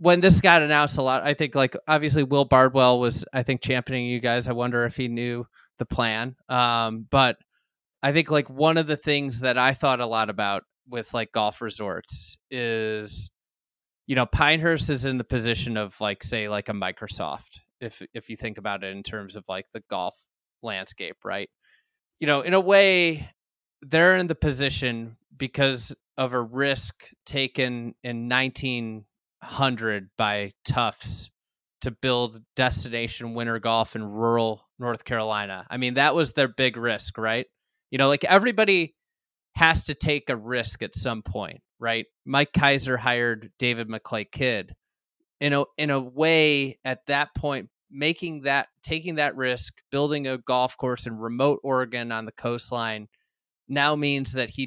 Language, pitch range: English, 115-140 Hz